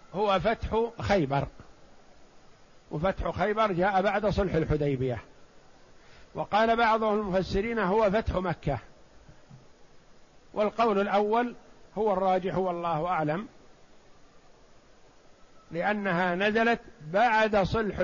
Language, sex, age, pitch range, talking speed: Arabic, male, 60-79, 180-220 Hz, 85 wpm